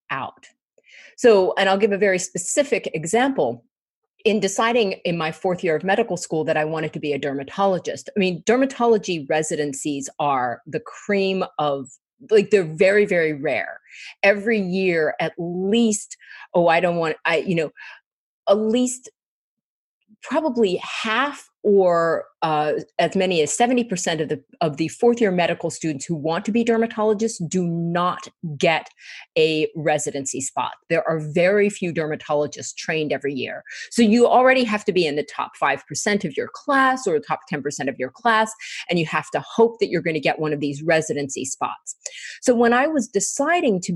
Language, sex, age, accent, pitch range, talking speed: English, female, 40-59, American, 165-230 Hz, 170 wpm